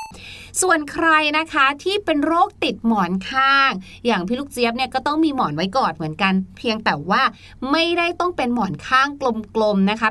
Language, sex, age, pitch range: Thai, female, 30-49, 215-295 Hz